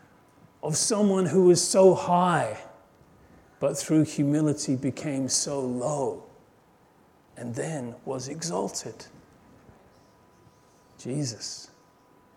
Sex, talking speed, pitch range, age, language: male, 80 wpm, 150-200 Hz, 40-59, English